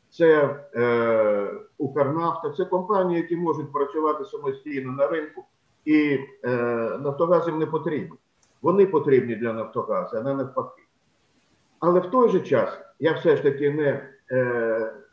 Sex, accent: male, native